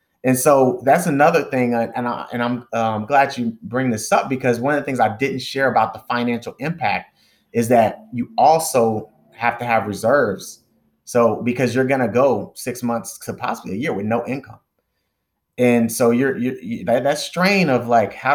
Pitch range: 110-125 Hz